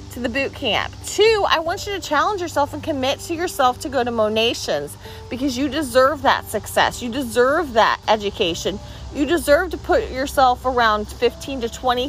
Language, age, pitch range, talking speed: English, 40-59, 225-290 Hz, 180 wpm